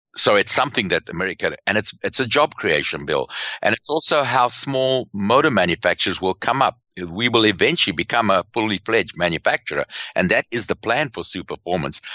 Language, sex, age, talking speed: English, male, 60-79, 185 wpm